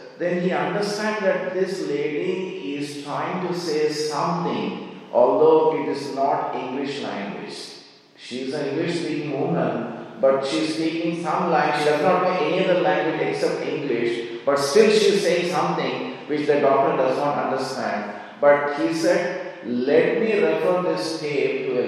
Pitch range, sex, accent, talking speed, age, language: 135-195 Hz, male, Indian, 160 wpm, 40-59, English